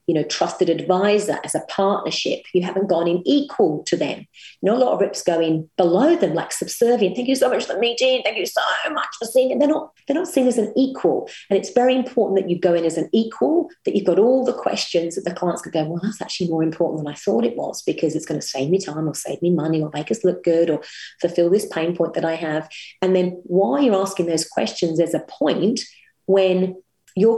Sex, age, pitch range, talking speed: female, 40-59, 170-225 Hz, 255 wpm